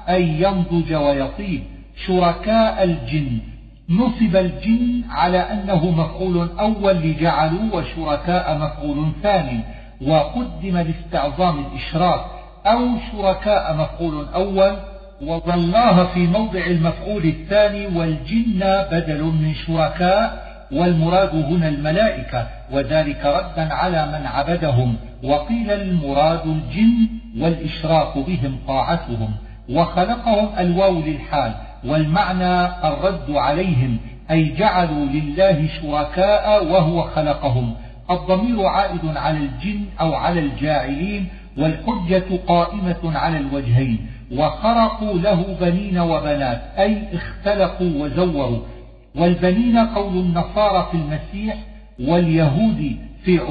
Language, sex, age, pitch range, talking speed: Arabic, male, 50-69, 150-195 Hz, 90 wpm